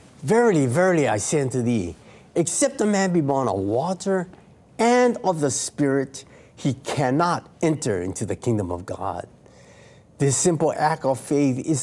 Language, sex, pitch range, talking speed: English, male, 120-175 Hz, 155 wpm